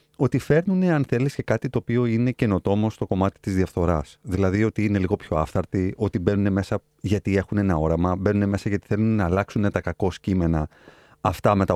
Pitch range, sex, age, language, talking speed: 90-135 Hz, male, 30-49, Greek, 200 wpm